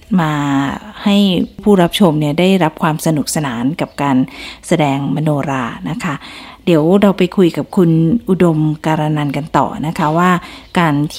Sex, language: female, Thai